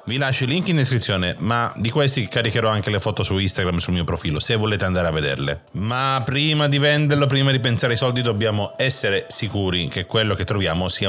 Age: 30-49